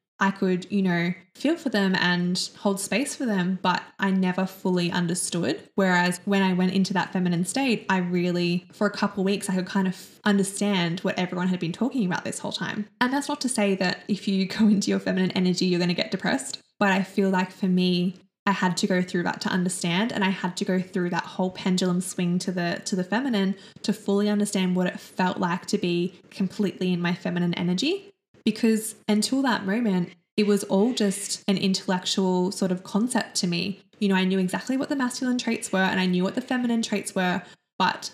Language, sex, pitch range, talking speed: English, female, 180-205 Hz, 220 wpm